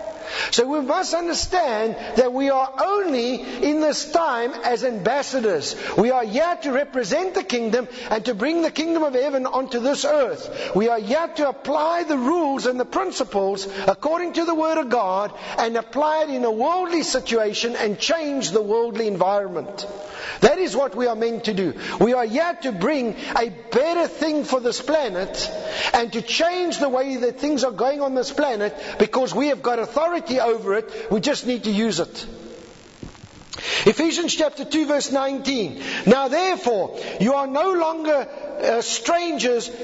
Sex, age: male, 50-69